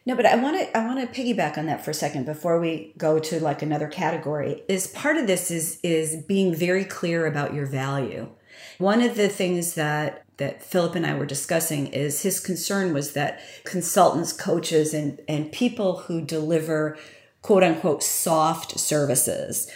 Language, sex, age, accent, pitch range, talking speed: English, female, 40-59, American, 155-195 Hz, 180 wpm